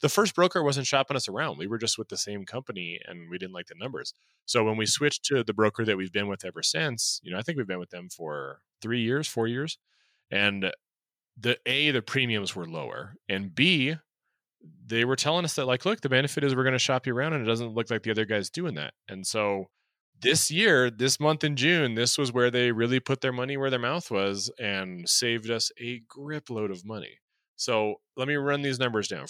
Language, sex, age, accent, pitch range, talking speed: English, male, 30-49, American, 105-140 Hz, 240 wpm